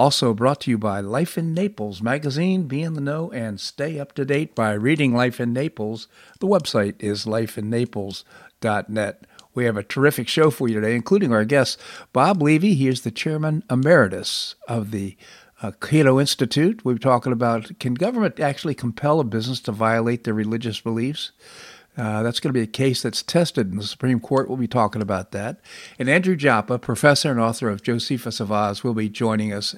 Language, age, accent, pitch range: English, 50-69, American, 115-145 Hz